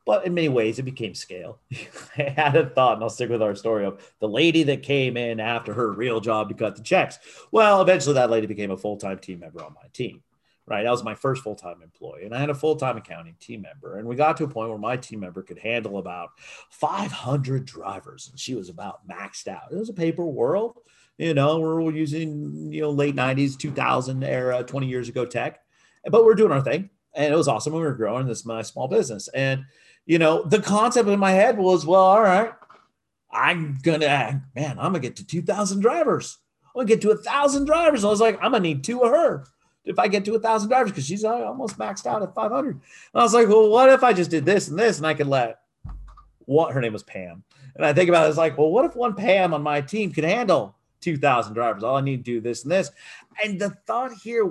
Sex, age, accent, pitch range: male, 40-59, American, 125-195 Hz